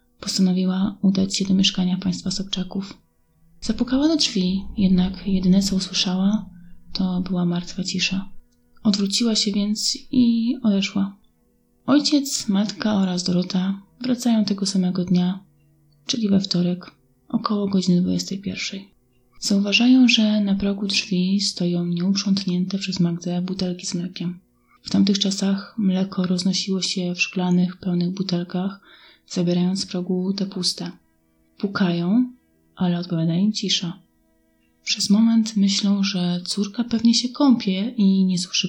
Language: Polish